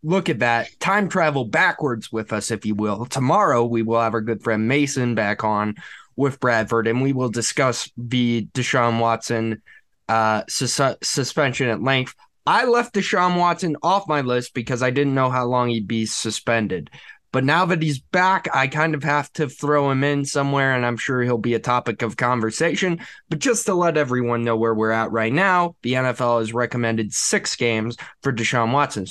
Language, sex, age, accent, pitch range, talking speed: English, male, 20-39, American, 115-145 Hz, 190 wpm